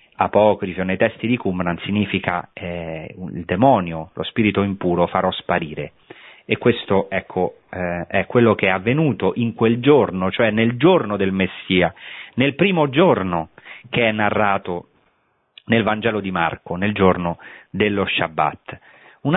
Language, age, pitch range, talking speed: Italian, 30-49, 95-135 Hz, 145 wpm